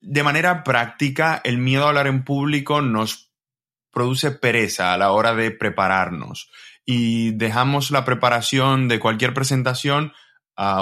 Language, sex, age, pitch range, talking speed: Spanish, male, 20-39, 115-150 Hz, 140 wpm